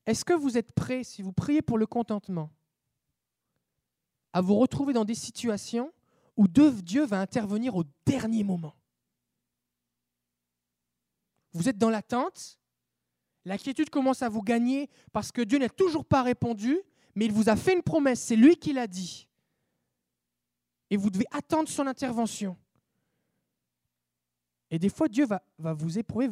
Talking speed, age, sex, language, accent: 150 wpm, 20-39, male, French, French